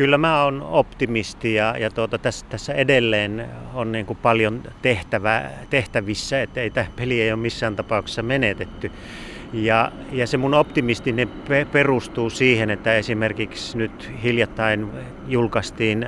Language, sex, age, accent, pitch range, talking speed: Finnish, male, 30-49, native, 105-125 Hz, 135 wpm